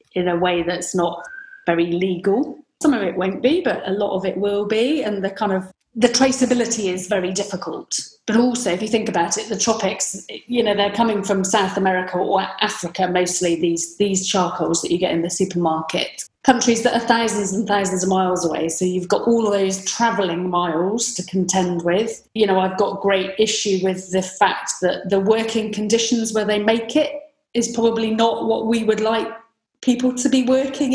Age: 30-49